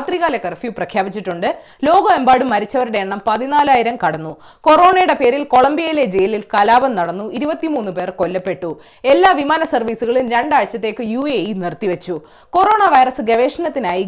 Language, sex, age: Malayalam, female, 20-39